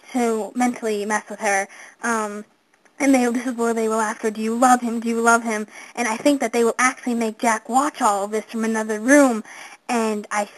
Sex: female